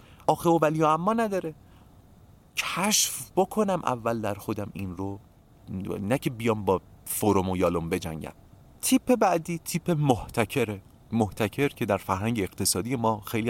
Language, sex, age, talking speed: Persian, male, 40-59, 140 wpm